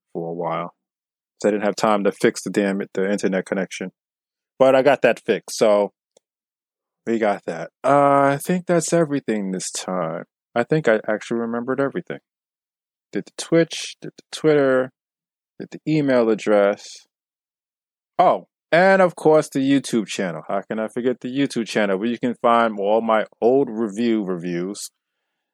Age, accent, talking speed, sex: 20-39, American, 165 wpm, male